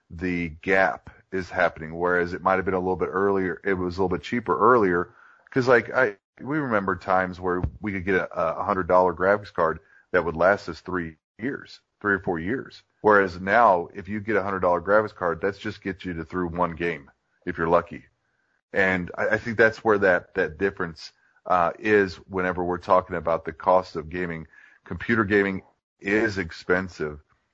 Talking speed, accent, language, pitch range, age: 195 wpm, American, English, 90-95 Hz, 30-49